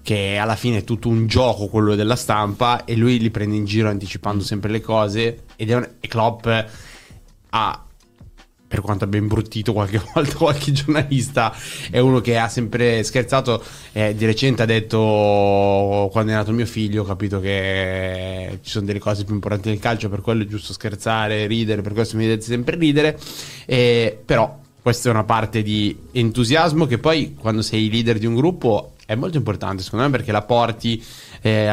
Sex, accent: male, native